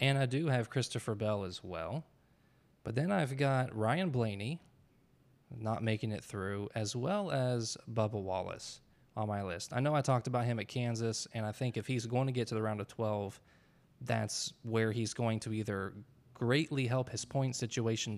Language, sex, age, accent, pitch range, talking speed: English, male, 20-39, American, 110-130 Hz, 190 wpm